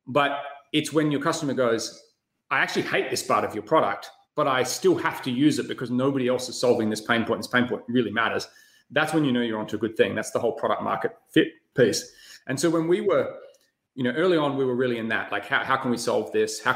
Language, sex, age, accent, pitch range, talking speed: English, male, 30-49, Australian, 120-150 Hz, 260 wpm